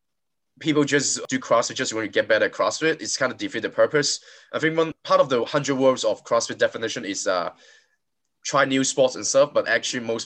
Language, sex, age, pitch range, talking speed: English, male, 20-39, 115-150 Hz, 220 wpm